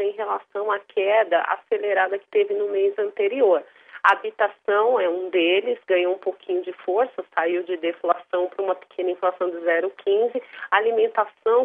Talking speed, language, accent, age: 160 wpm, Portuguese, Brazilian, 40-59